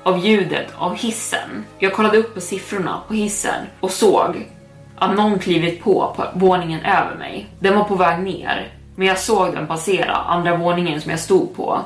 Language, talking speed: Swedish, 185 wpm